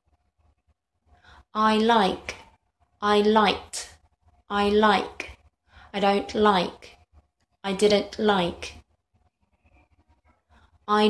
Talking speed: 70 wpm